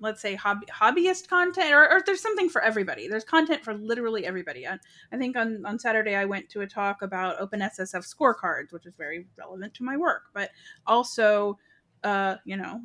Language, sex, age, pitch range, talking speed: English, female, 30-49, 200-270 Hz, 200 wpm